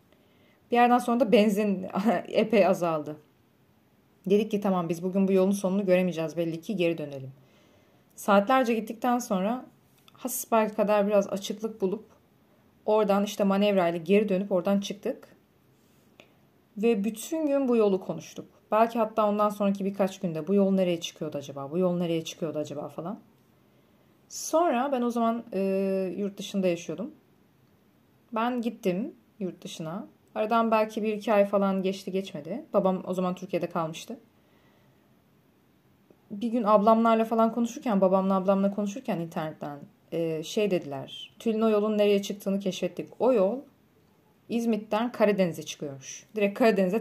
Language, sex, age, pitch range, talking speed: Turkish, female, 30-49, 180-225 Hz, 140 wpm